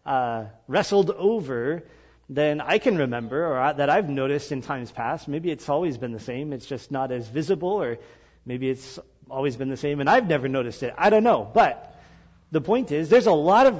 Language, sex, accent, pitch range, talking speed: English, male, American, 140-185 Hz, 210 wpm